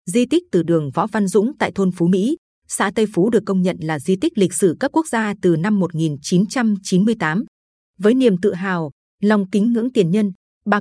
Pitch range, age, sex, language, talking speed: 180-230 Hz, 20-39, female, Vietnamese, 210 wpm